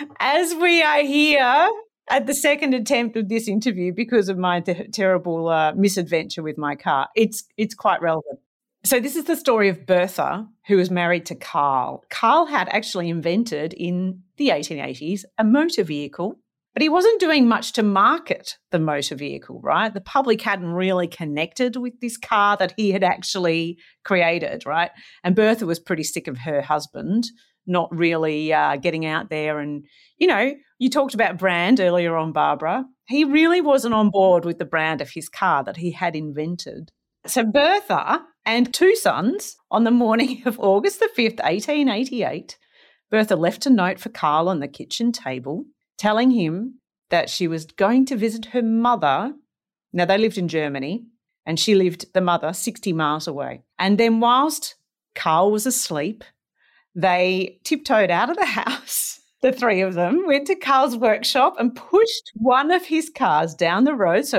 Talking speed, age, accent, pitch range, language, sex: 175 wpm, 40-59, Australian, 175-260 Hz, English, female